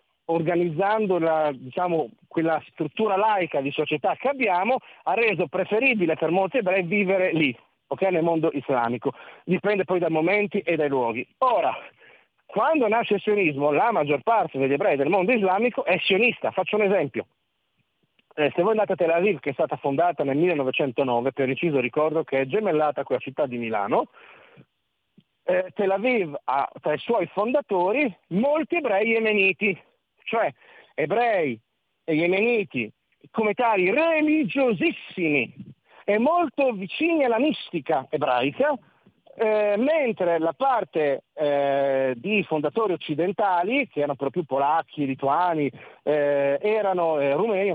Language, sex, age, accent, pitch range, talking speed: Italian, male, 40-59, native, 150-220 Hz, 140 wpm